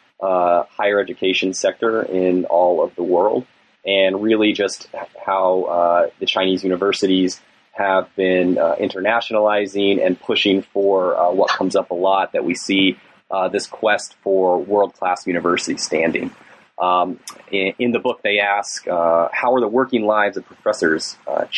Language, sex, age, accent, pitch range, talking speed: English, male, 30-49, American, 95-110 Hz, 160 wpm